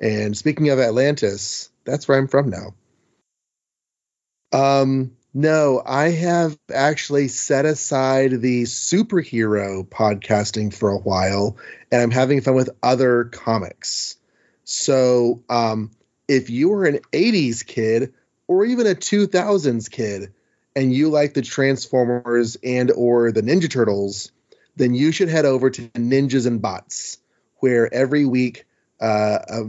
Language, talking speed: English, 130 wpm